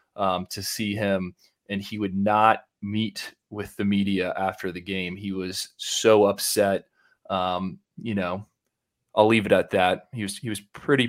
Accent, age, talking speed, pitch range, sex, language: American, 20-39, 175 wpm, 100-110 Hz, male, English